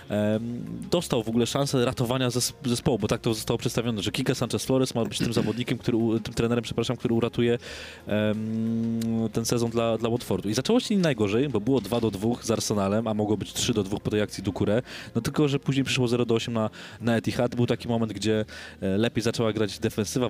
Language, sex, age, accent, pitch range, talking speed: Polish, male, 20-39, native, 100-120 Hz, 205 wpm